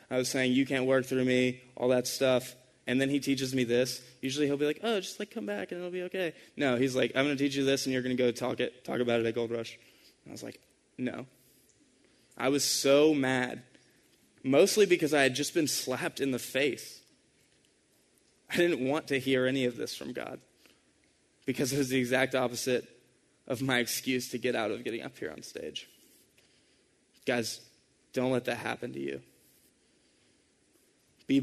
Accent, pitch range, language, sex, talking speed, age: American, 125-145 Hz, English, male, 200 wpm, 20-39